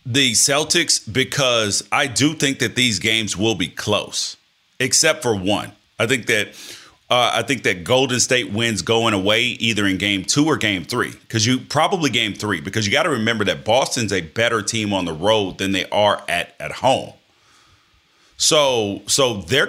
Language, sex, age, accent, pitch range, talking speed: English, male, 30-49, American, 100-120 Hz, 185 wpm